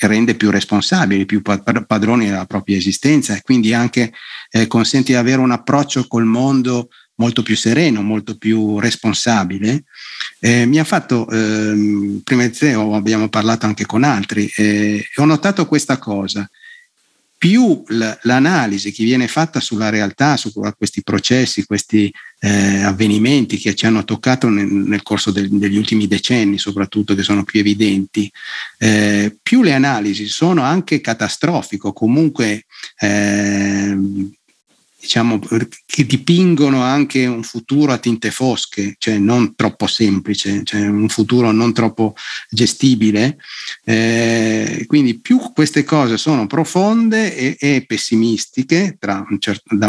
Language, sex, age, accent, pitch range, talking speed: Italian, male, 50-69, native, 105-145 Hz, 135 wpm